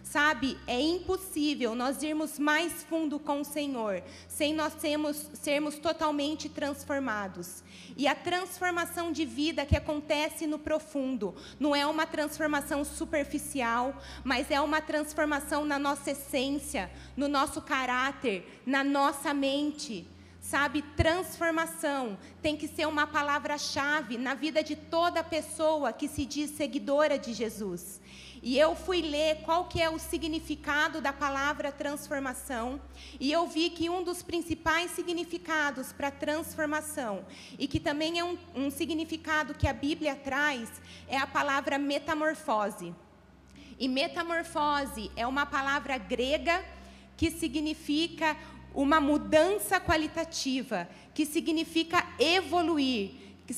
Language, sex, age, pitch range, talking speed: Portuguese, female, 30-49, 275-320 Hz, 125 wpm